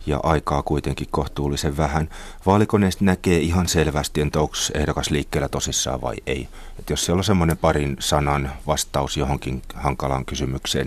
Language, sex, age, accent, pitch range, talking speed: Finnish, male, 30-49, native, 70-85 Hz, 145 wpm